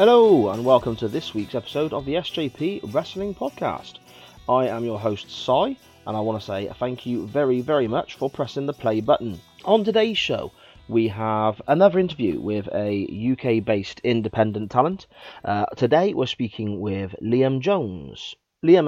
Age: 30-49